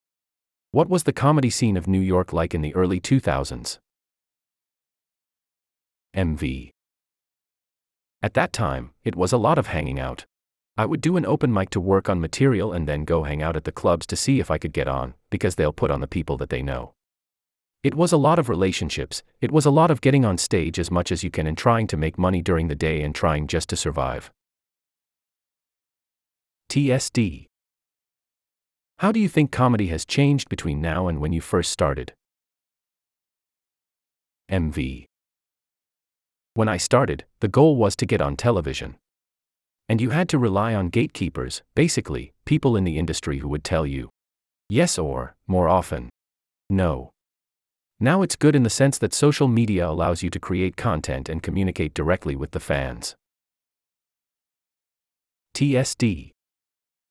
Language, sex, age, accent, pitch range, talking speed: English, male, 30-49, American, 75-115 Hz, 165 wpm